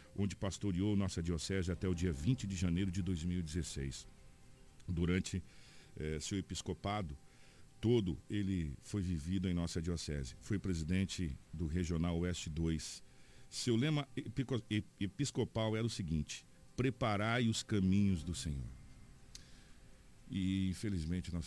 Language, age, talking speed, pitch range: Portuguese, 50-69, 120 wpm, 80-95 Hz